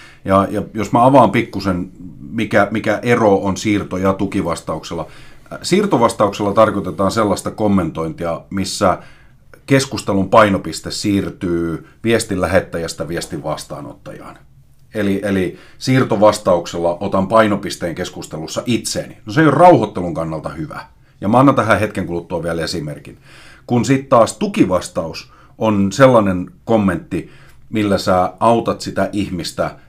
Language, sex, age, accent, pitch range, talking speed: Finnish, male, 30-49, native, 95-115 Hz, 120 wpm